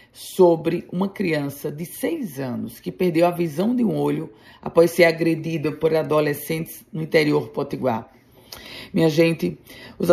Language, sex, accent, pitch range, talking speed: Portuguese, female, Brazilian, 150-180 Hz, 150 wpm